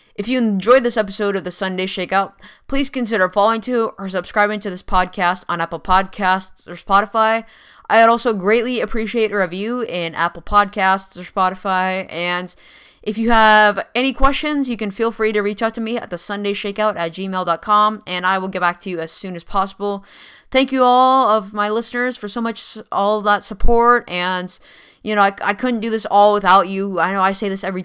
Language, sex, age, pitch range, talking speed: English, female, 10-29, 180-215 Hz, 205 wpm